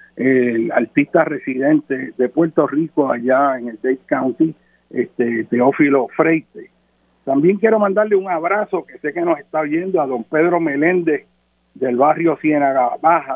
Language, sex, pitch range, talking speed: Spanish, male, 135-190 Hz, 150 wpm